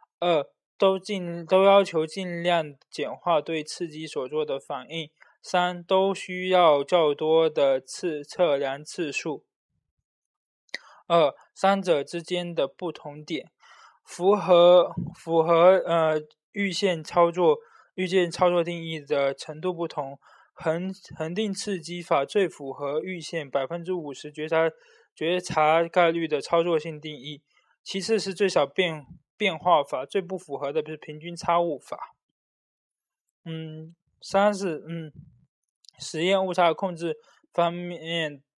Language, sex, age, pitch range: Chinese, male, 20-39, 155-190 Hz